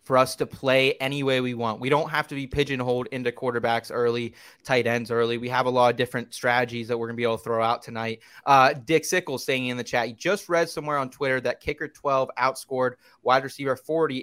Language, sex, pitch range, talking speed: English, male, 125-145 Hz, 240 wpm